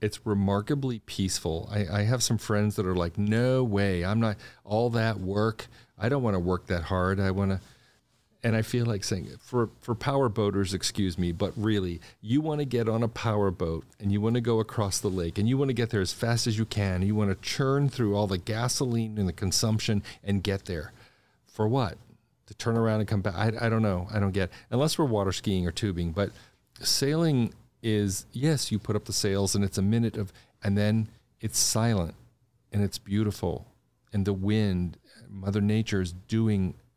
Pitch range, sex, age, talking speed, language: 95-115 Hz, male, 40-59, 215 wpm, English